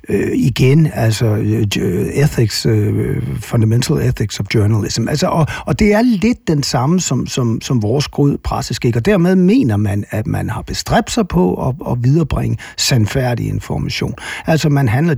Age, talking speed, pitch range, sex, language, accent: 60-79, 145 wpm, 115-160 Hz, male, Danish, native